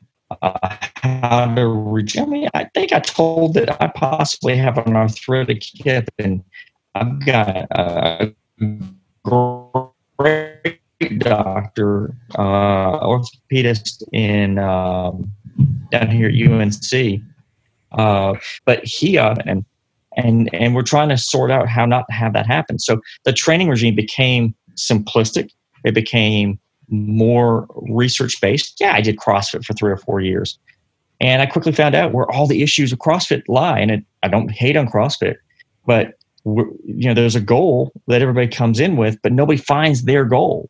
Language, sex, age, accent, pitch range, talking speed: English, male, 40-59, American, 110-130 Hz, 150 wpm